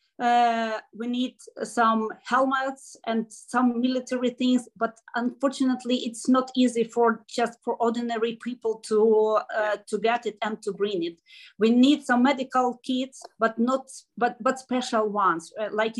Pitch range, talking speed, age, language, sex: 215-250 Hz, 155 wpm, 30-49, English, female